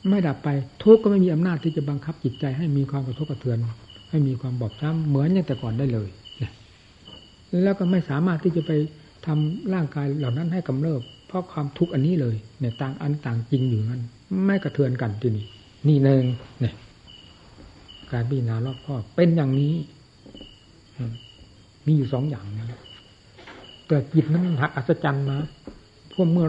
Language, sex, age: Thai, male, 60-79